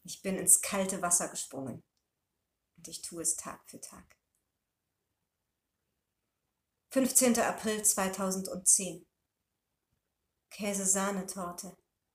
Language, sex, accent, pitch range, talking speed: German, female, German, 175-200 Hz, 90 wpm